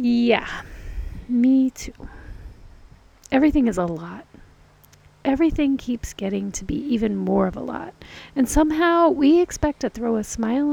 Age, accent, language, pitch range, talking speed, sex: 30-49, American, English, 200-275 Hz, 140 wpm, female